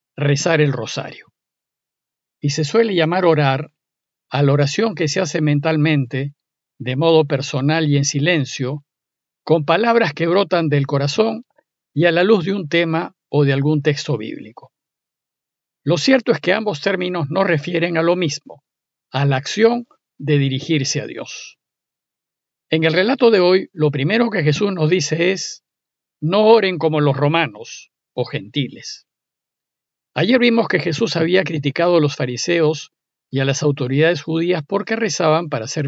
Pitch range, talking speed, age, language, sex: 145-180 Hz, 155 wpm, 50-69, Spanish, male